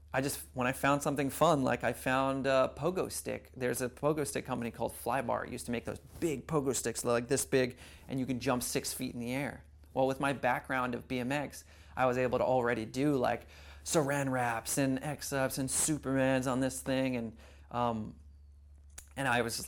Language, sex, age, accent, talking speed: English, male, 30-49, American, 205 wpm